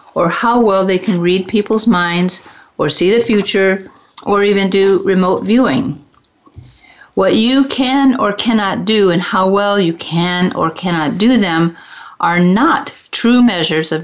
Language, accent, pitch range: English, American, 180-230 Hz